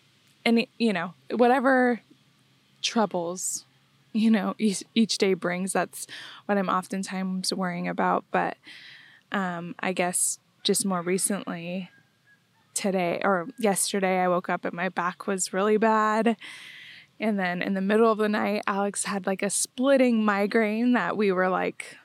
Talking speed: 145 wpm